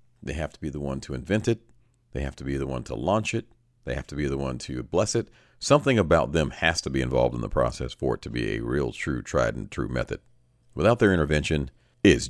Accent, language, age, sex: American, English, 40-59, male